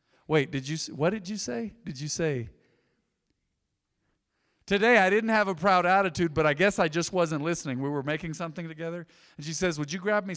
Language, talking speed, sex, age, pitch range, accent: English, 210 wpm, male, 40-59, 145-195 Hz, American